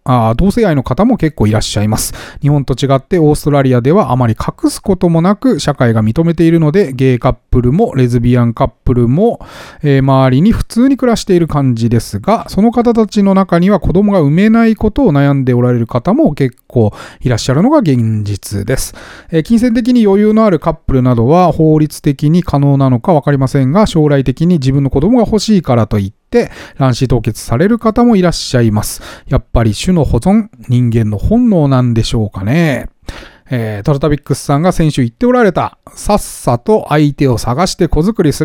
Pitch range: 125-190 Hz